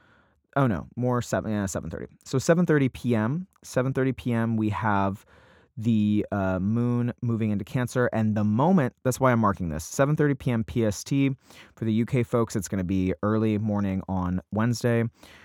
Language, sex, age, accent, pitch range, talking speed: English, male, 20-39, American, 95-120 Hz, 155 wpm